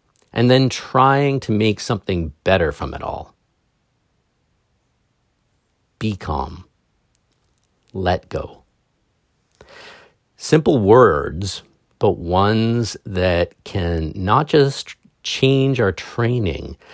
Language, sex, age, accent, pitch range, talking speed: English, male, 50-69, American, 80-115 Hz, 90 wpm